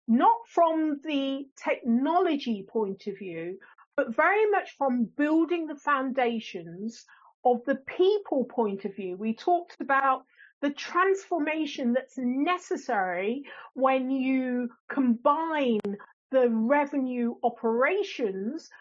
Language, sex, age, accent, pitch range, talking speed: English, female, 40-59, British, 230-310 Hz, 105 wpm